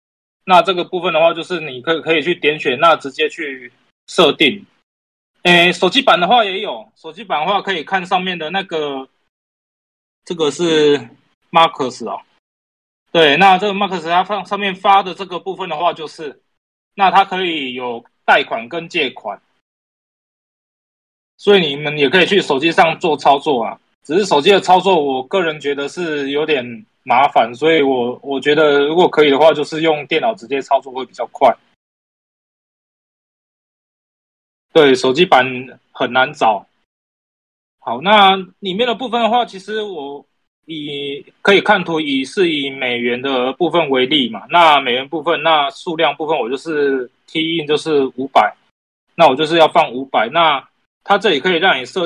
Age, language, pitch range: 20-39, Chinese, 140-190 Hz